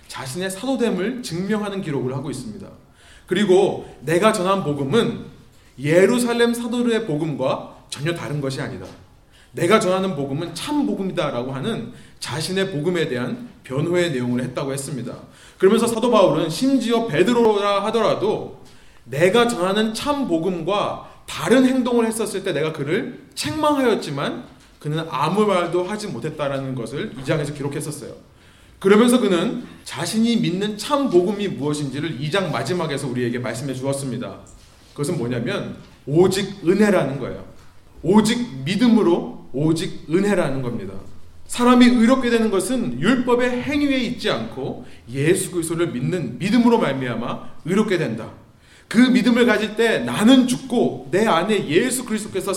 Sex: male